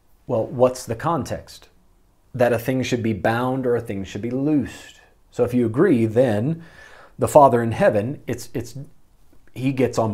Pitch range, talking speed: 100-135 Hz, 180 wpm